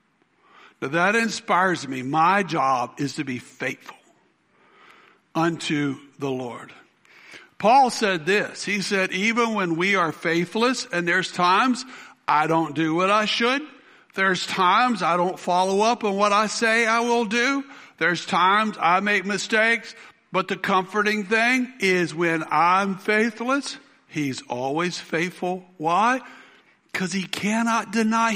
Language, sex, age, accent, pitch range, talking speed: English, male, 60-79, American, 165-220 Hz, 140 wpm